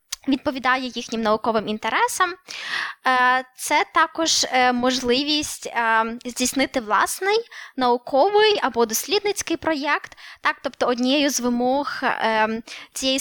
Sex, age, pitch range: female, 10-29, 230-280 Hz